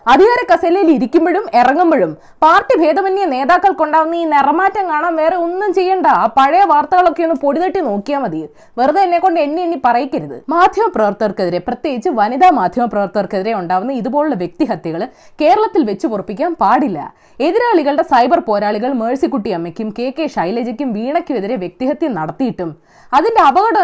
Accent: native